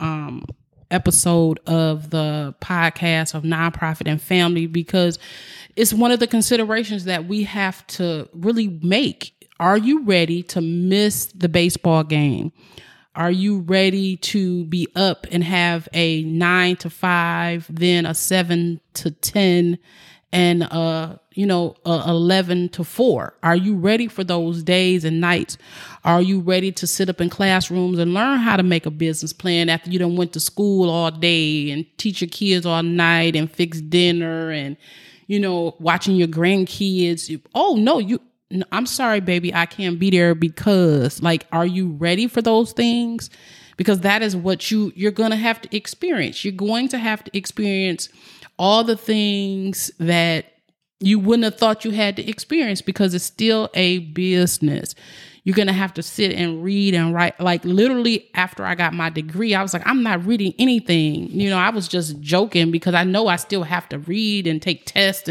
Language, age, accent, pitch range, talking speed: English, 30-49, American, 170-200 Hz, 180 wpm